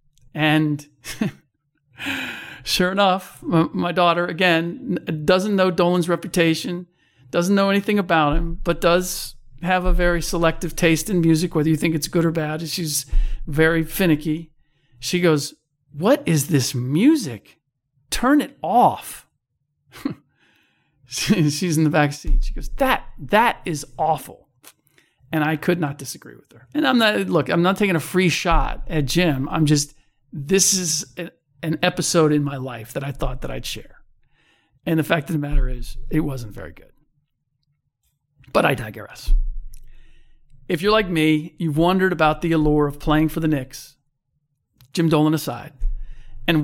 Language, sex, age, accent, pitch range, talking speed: English, male, 50-69, American, 140-170 Hz, 155 wpm